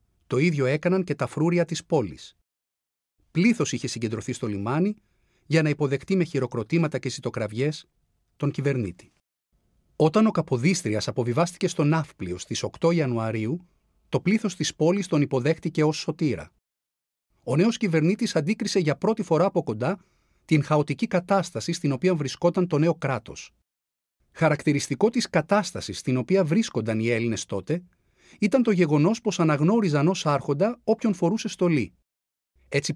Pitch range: 130-180 Hz